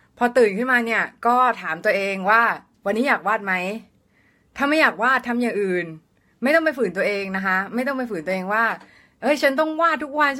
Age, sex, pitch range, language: 20-39, female, 200-250 Hz, Thai